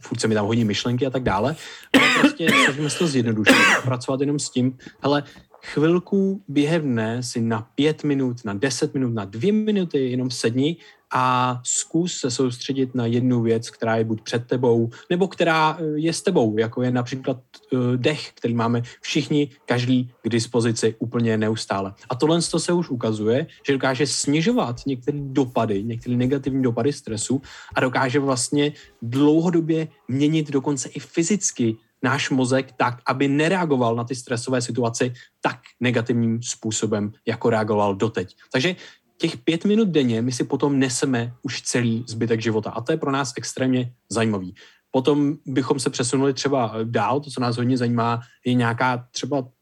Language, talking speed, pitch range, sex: Czech, 160 wpm, 115-145 Hz, male